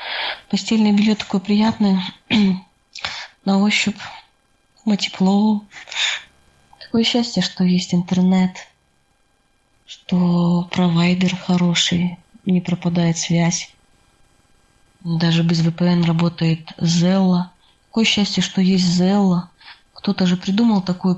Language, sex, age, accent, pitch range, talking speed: Russian, female, 20-39, native, 170-200 Hz, 90 wpm